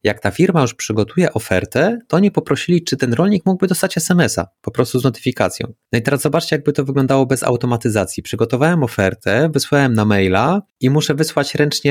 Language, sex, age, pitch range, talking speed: Polish, male, 30-49, 110-150 Hz, 185 wpm